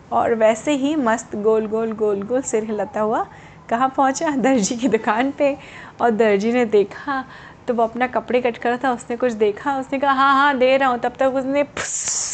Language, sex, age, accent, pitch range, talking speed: Hindi, female, 20-39, native, 235-290 Hz, 210 wpm